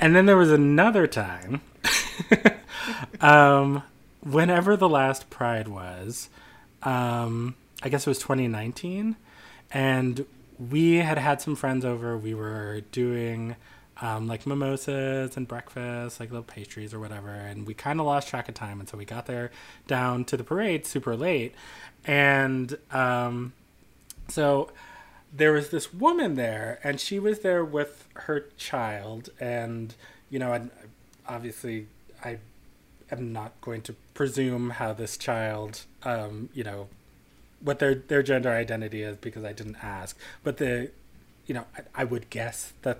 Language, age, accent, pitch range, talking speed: English, 30-49, American, 115-145 Hz, 150 wpm